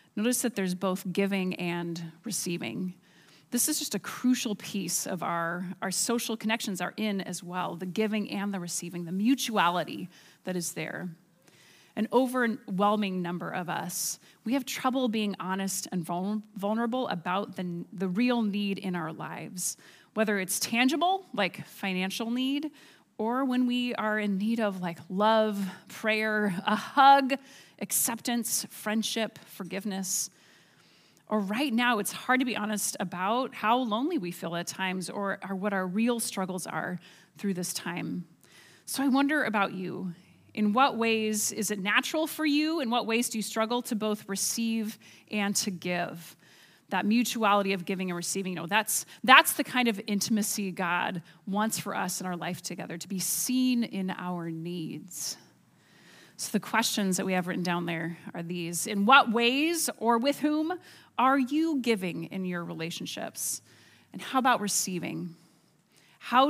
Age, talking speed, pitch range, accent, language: 30-49, 160 wpm, 180-230 Hz, American, English